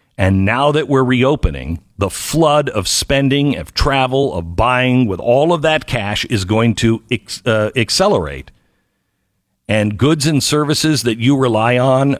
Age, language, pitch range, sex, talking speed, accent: 50-69, English, 90-120 Hz, male, 150 wpm, American